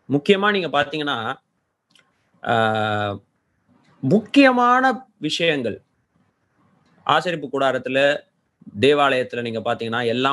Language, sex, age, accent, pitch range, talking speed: Tamil, male, 30-49, native, 125-175 Hz, 65 wpm